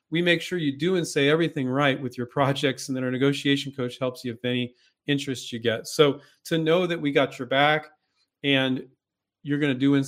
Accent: American